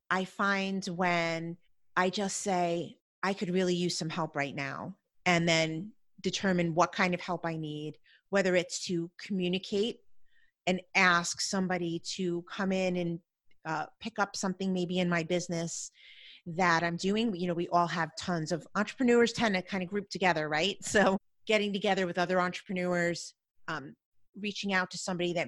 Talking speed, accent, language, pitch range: 170 wpm, American, English, 170-195 Hz